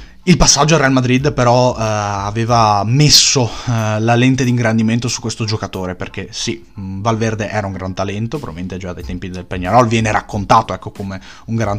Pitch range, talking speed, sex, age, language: 105-125 Hz, 185 wpm, male, 20-39, Italian